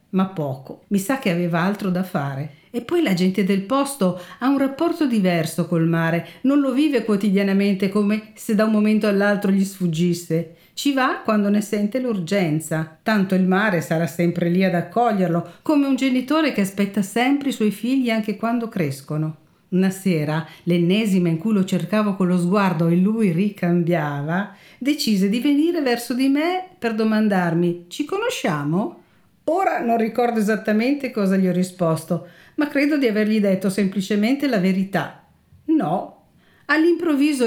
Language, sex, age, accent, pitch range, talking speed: Italian, female, 50-69, native, 180-255 Hz, 160 wpm